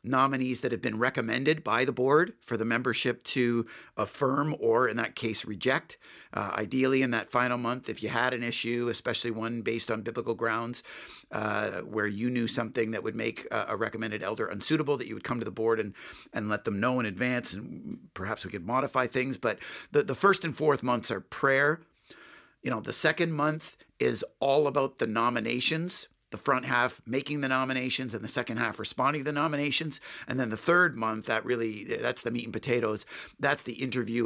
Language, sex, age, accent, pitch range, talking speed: English, male, 50-69, American, 115-140 Hz, 200 wpm